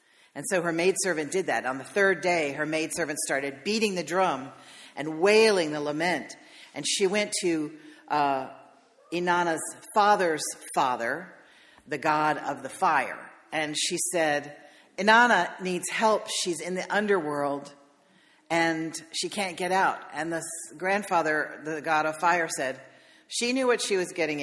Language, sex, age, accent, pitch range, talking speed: English, female, 50-69, American, 155-210 Hz, 150 wpm